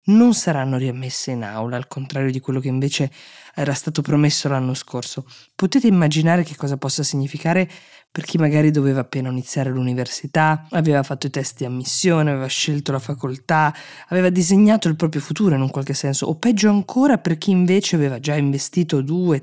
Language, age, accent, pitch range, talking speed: Italian, 20-39, native, 140-175 Hz, 180 wpm